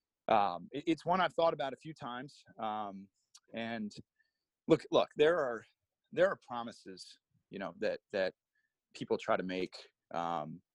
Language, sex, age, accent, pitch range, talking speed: English, male, 30-49, American, 100-135 Hz, 150 wpm